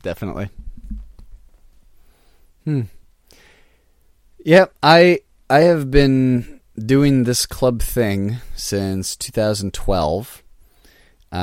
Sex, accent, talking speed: male, American, 70 wpm